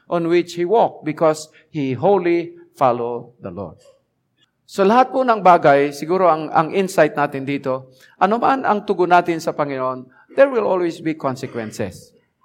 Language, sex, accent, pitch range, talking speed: English, male, Filipino, 145-200 Hz, 155 wpm